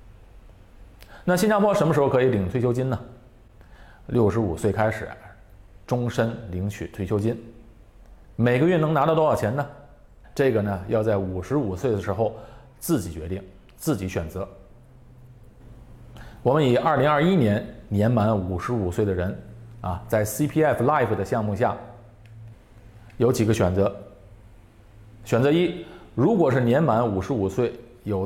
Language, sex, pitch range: Chinese, male, 95-120 Hz